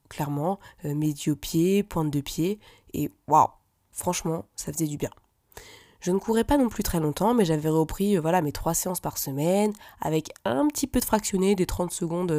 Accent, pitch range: French, 155-205 Hz